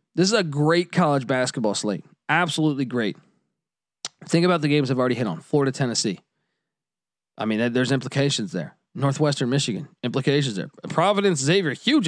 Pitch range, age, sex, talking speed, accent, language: 130-170 Hz, 20-39, male, 155 wpm, American, English